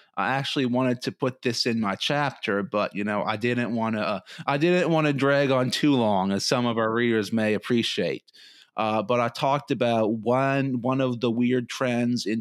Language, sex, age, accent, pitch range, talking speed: English, male, 30-49, American, 115-140 Hz, 215 wpm